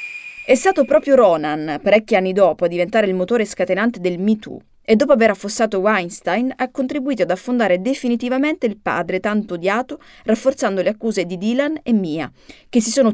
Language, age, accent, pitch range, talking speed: Italian, 30-49, native, 190-245 Hz, 180 wpm